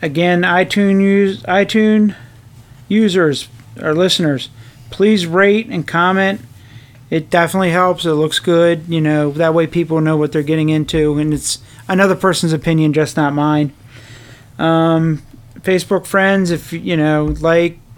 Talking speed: 135 wpm